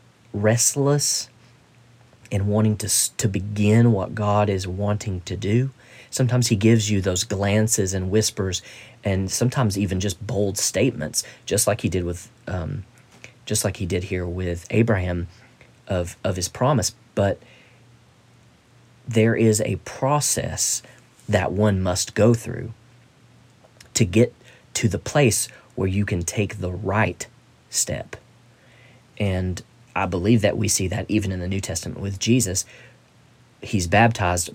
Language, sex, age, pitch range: English, male, 40-59, 95-120 Hz